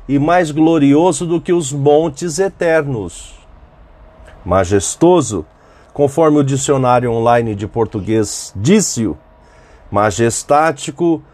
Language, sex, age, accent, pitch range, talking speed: Portuguese, male, 40-59, Brazilian, 110-165 Hz, 90 wpm